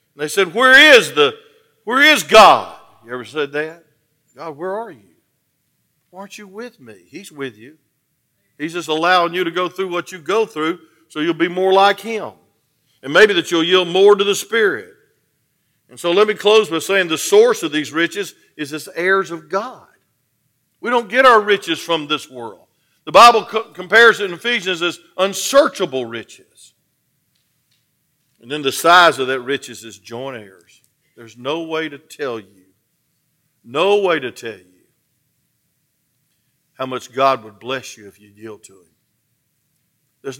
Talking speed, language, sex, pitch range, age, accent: 170 wpm, English, male, 140-205 Hz, 50-69, American